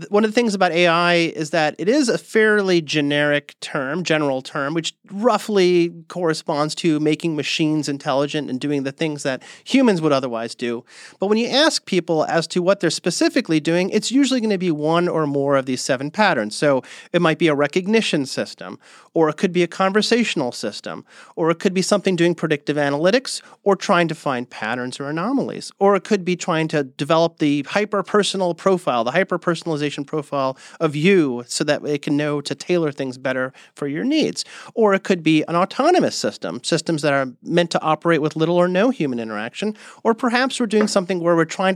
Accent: American